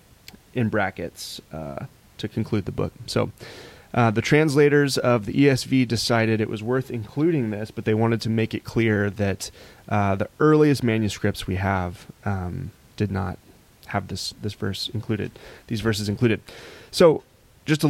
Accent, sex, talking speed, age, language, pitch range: American, male, 160 wpm, 30-49, English, 105-120 Hz